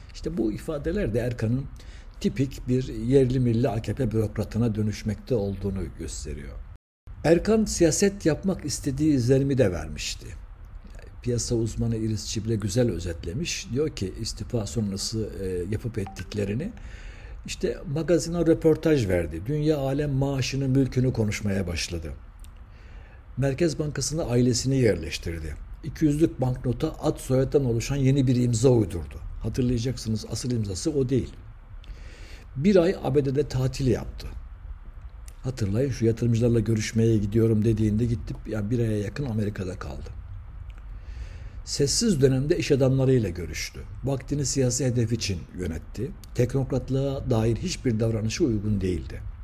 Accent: native